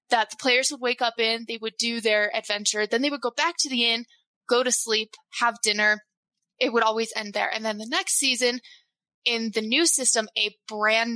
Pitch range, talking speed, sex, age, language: 210-245 Hz, 220 wpm, female, 20-39, English